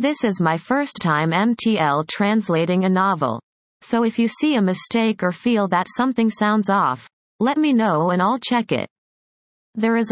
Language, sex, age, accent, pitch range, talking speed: English, female, 30-49, American, 175-230 Hz, 180 wpm